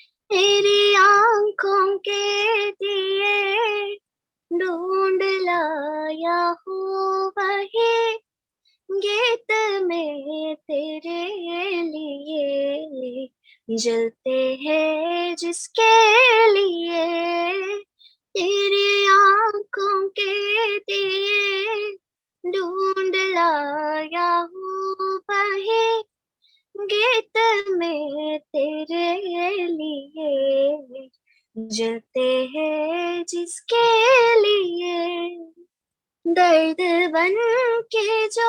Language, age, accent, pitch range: Malayalam, 20-39, native, 345-440 Hz